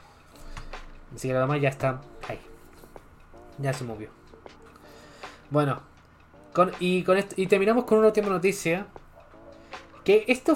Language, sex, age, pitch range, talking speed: Spanish, male, 20-39, 135-185 Hz, 125 wpm